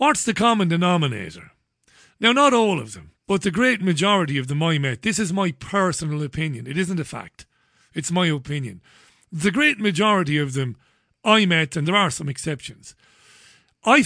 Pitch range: 140-195 Hz